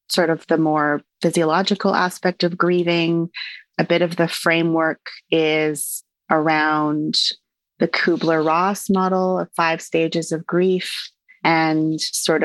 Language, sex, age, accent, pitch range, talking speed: English, female, 30-49, American, 150-175 Hz, 120 wpm